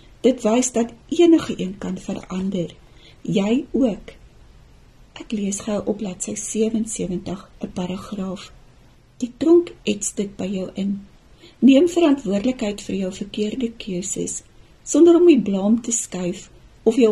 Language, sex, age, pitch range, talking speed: Dutch, female, 40-59, 190-235 Hz, 135 wpm